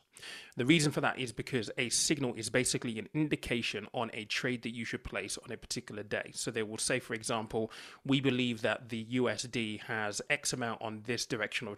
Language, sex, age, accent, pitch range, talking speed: English, male, 30-49, British, 115-145 Hz, 205 wpm